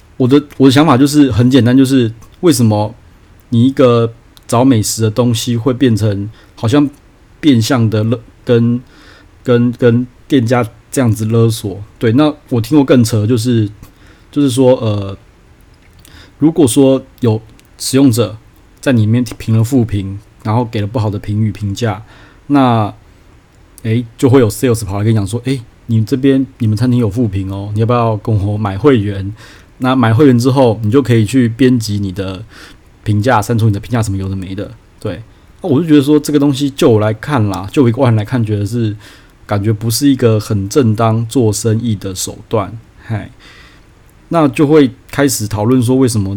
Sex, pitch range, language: male, 100-125 Hz, Chinese